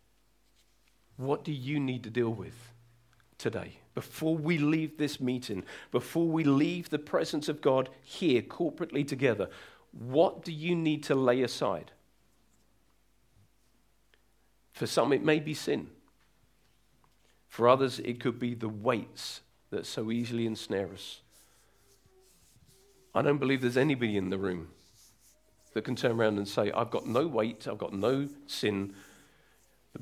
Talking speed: 140 wpm